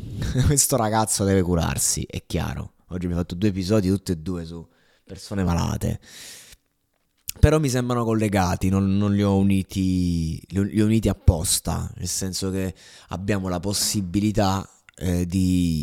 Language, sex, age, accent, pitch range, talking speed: Italian, male, 20-39, native, 90-115 Hz, 155 wpm